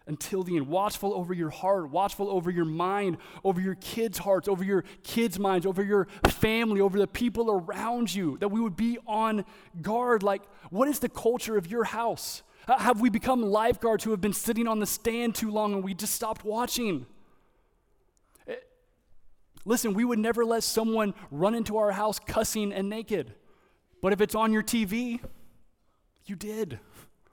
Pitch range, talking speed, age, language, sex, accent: 200-230 Hz, 175 wpm, 20-39, English, male, American